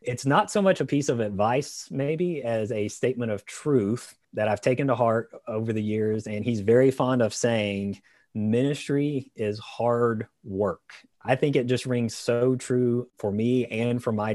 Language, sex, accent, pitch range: English, male, American, 100-120 Hz